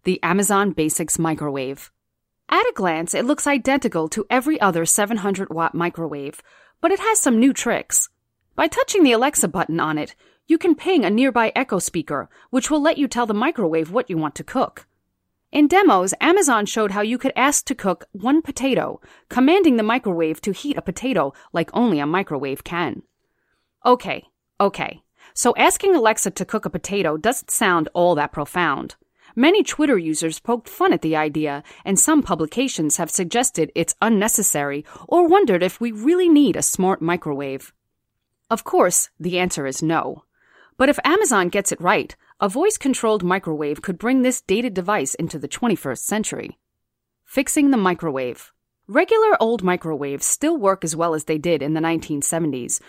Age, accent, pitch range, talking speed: 30-49, American, 165-260 Hz, 170 wpm